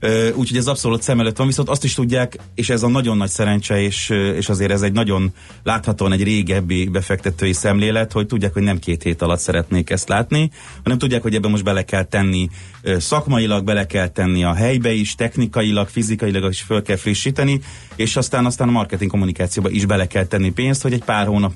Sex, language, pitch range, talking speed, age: male, Hungarian, 95-115 Hz, 205 wpm, 30-49